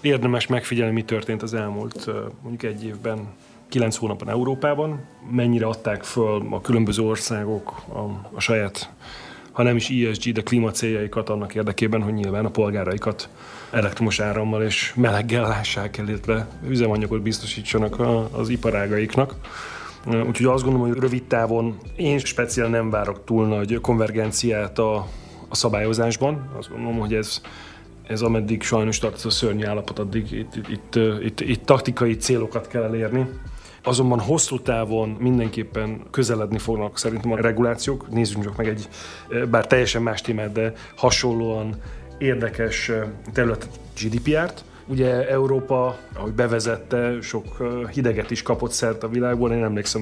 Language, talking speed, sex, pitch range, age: Hungarian, 140 wpm, male, 110-125 Hz, 30-49